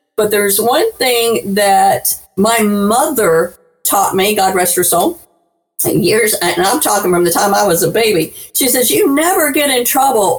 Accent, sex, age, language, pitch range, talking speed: American, female, 50-69, English, 200-265 Hz, 180 wpm